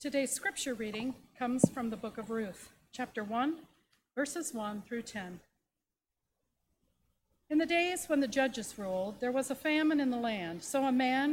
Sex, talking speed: female, 170 wpm